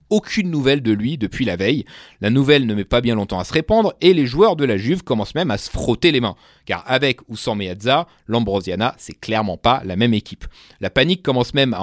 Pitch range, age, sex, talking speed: 105-160 Hz, 30-49, male, 240 wpm